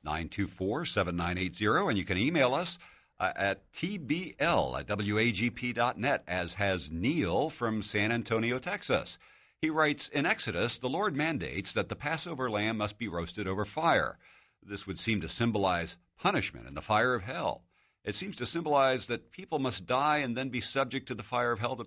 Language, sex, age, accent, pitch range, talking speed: English, male, 60-79, American, 95-125 Hz, 170 wpm